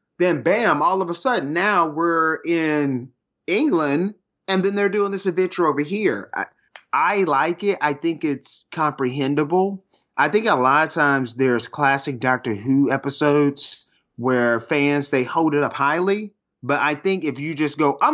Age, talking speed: 30-49, 175 wpm